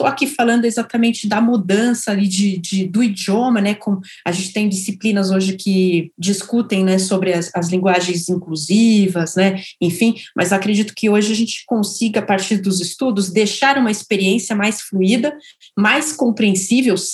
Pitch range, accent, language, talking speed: 185-215 Hz, Brazilian, Portuguese, 160 wpm